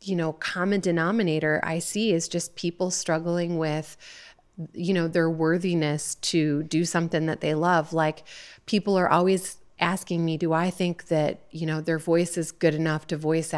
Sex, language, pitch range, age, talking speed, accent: female, English, 160-185 Hz, 30-49, 175 wpm, American